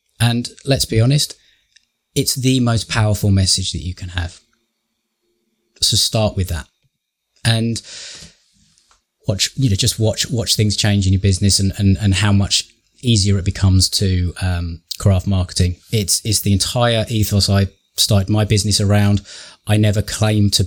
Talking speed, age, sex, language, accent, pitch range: 160 wpm, 20-39, male, English, British, 95-115 Hz